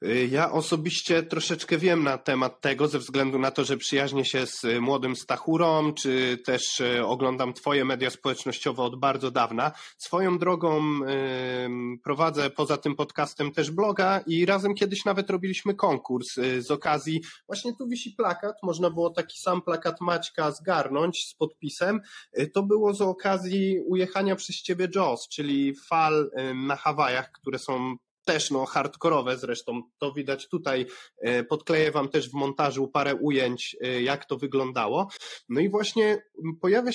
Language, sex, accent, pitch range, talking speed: Polish, male, native, 135-180 Hz, 145 wpm